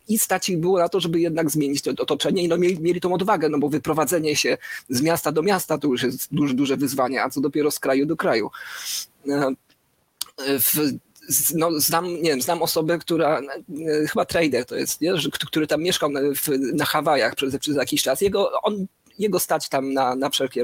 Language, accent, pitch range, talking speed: Polish, native, 145-205 Hz, 180 wpm